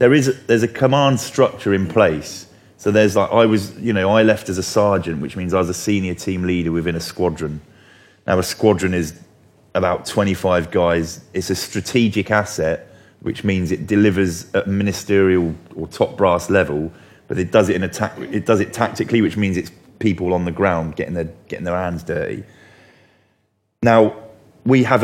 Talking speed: 190 wpm